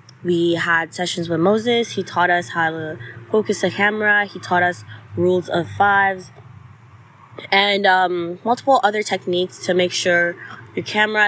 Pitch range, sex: 170-195 Hz, female